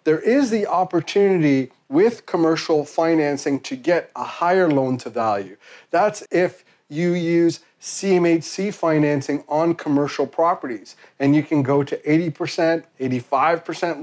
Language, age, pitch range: English, 40-59, 135-170 Hz